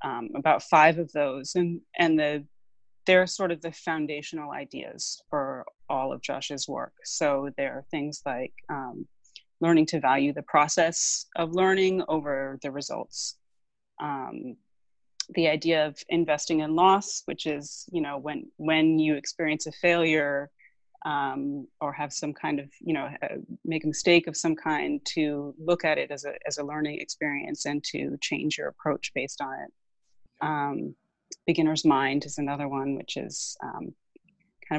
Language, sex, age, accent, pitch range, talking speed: English, female, 30-49, American, 145-165 Hz, 160 wpm